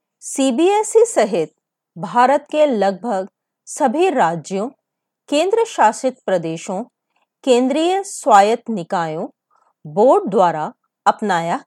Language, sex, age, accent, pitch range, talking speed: Hindi, female, 30-49, native, 190-310 Hz, 80 wpm